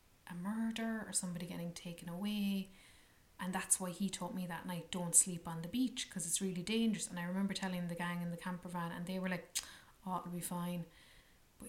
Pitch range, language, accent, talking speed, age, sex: 170-190 Hz, English, Irish, 220 wpm, 20-39, female